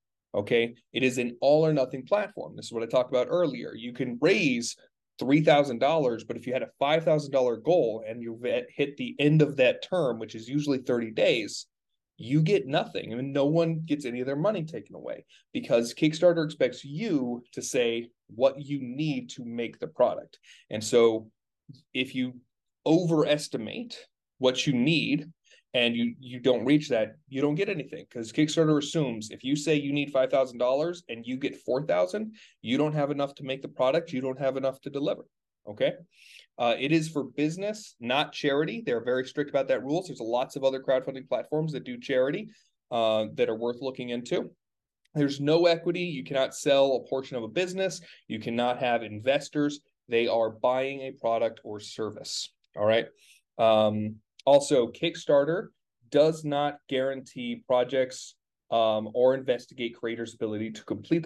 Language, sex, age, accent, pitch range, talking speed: English, male, 30-49, American, 120-150 Hz, 175 wpm